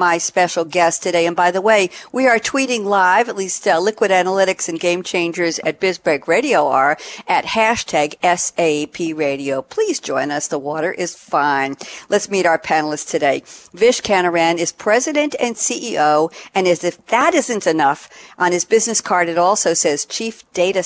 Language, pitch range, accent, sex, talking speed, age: English, 160-215 Hz, American, female, 175 wpm, 50-69